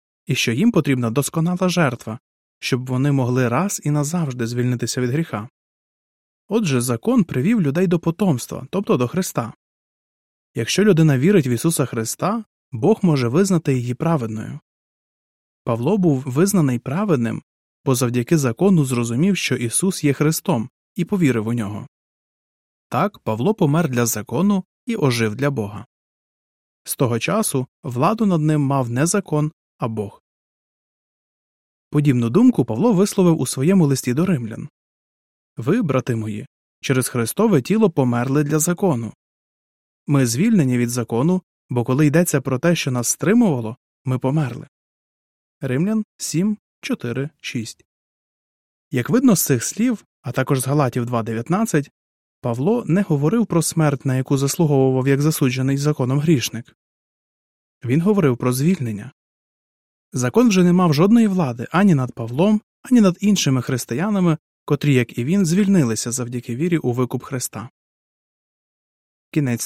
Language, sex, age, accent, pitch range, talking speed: Ukrainian, male, 20-39, native, 125-180 Hz, 135 wpm